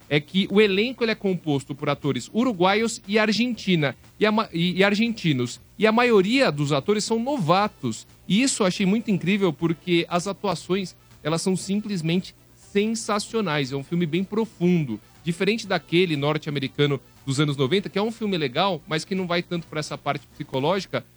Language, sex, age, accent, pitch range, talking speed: Portuguese, male, 40-59, Brazilian, 155-200 Hz, 160 wpm